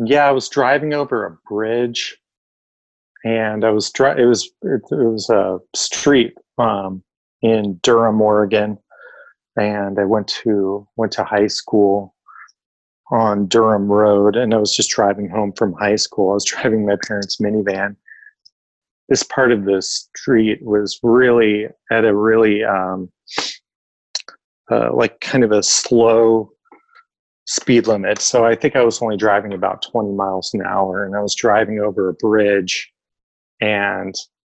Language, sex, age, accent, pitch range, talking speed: English, male, 30-49, American, 100-115 Hz, 150 wpm